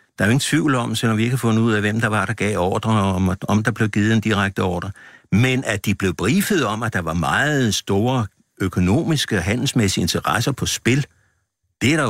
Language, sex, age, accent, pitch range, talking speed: Danish, male, 60-79, native, 100-145 Hz, 240 wpm